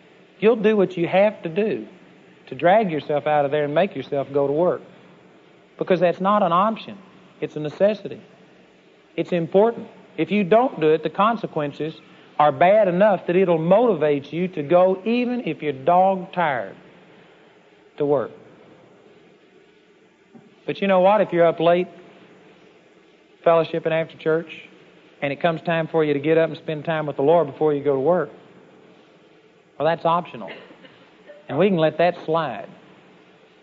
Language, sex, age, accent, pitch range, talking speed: English, male, 50-69, American, 155-195 Hz, 160 wpm